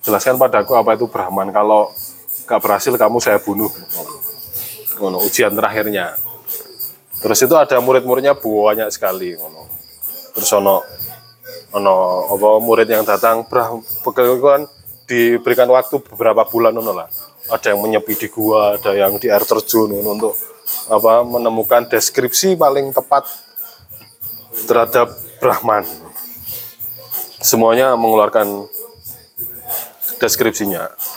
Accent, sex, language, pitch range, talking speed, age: native, male, Indonesian, 105-135 Hz, 100 wpm, 20-39